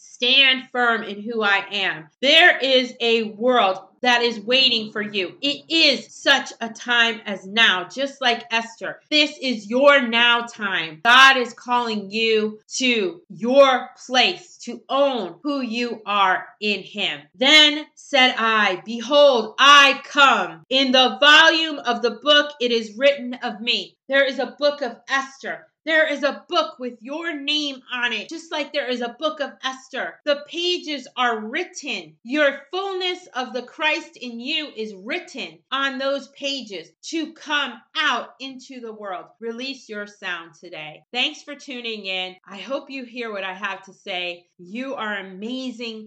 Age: 30-49